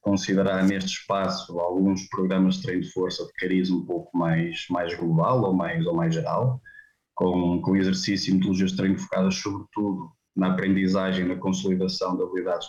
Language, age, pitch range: Portuguese, 20-39, 95-120 Hz